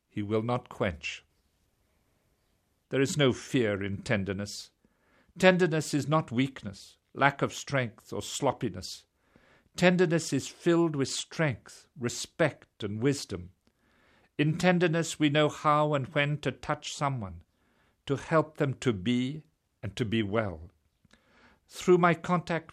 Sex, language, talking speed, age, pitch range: male, English, 130 wpm, 50-69, 110-150 Hz